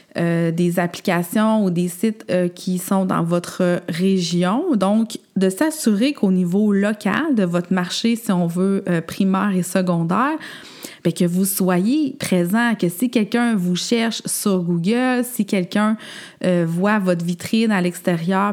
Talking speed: 155 wpm